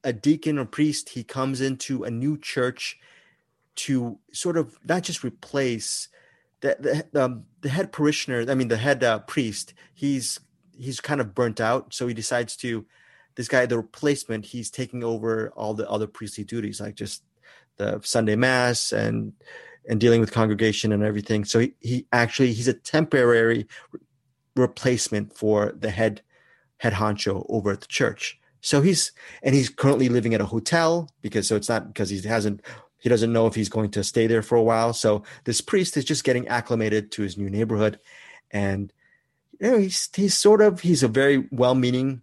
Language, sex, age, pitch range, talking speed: English, male, 30-49, 110-135 Hz, 185 wpm